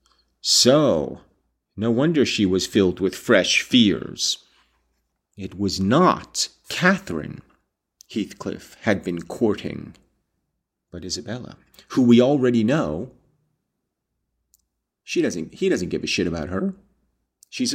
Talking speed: 110 wpm